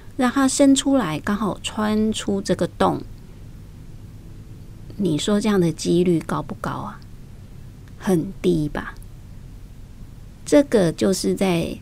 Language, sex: Chinese, female